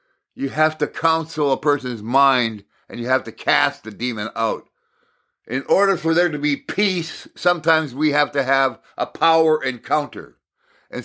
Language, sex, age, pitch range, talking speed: English, male, 60-79, 135-175 Hz, 170 wpm